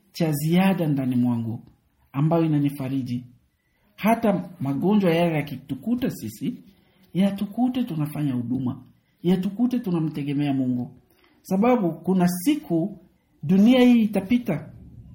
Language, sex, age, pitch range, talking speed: Swahili, male, 60-79, 150-215 Hz, 95 wpm